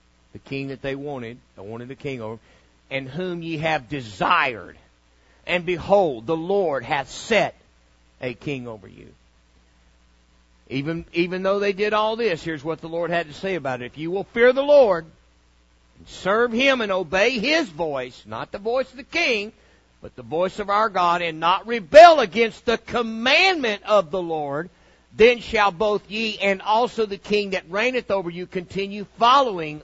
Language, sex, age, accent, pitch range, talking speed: English, male, 60-79, American, 140-195 Hz, 180 wpm